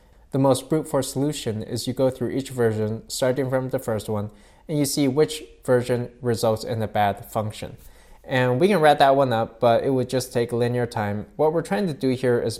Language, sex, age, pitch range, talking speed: English, male, 20-39, 110-130 Hz, 225 wpm